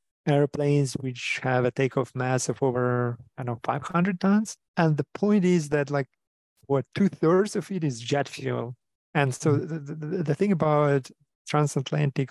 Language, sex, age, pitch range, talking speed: Ukrainian, male, 40-59, 125-150 Hz, 170 wpm